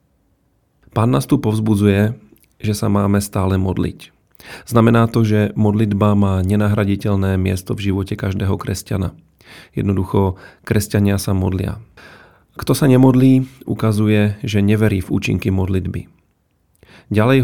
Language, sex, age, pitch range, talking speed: Slovak, male, 40-59, 100-115 Hz, 115 wpm